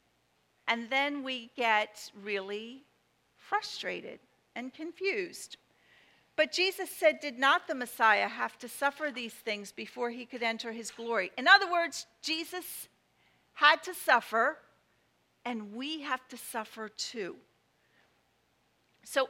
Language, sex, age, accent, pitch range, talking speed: English, female, 50-69, American, 240-320 Hz, 125 wpm